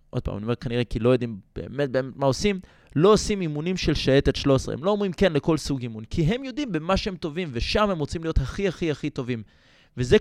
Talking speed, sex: 235 wpm, male